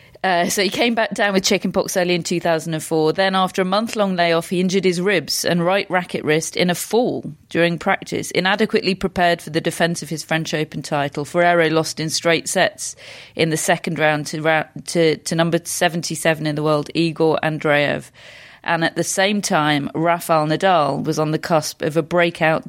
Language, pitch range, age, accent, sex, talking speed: English, 155-185 Hz, 30-49, British, female, 190 wpm